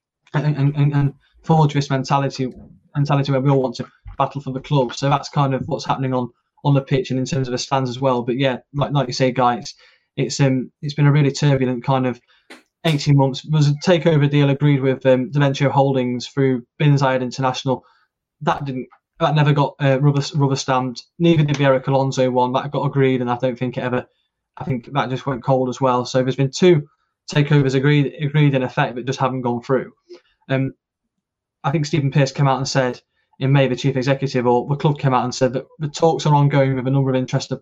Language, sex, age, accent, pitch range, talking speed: English, male, 20-39, British, 130-145 Hz, 225 wpm